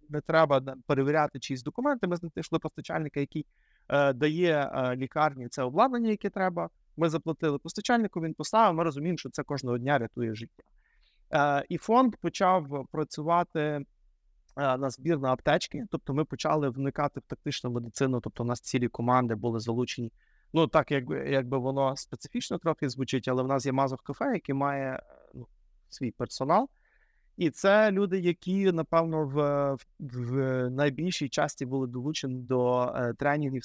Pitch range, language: 130-165 Hz, Ukrainian